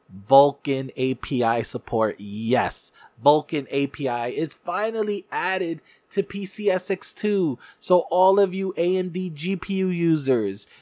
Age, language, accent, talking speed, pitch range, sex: 30-49, English, American, 100 wpm, 130-170 Hz, male